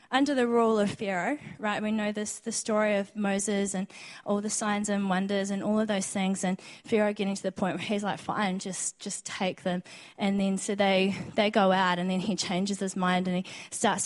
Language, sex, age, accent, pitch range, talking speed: English, female, 20-39, Australian, 195-250 Hz, 220 wpm